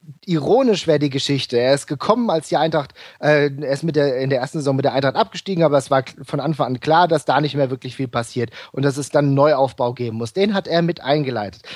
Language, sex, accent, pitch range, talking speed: German, male, German, 140-185 Hz, 255 wpm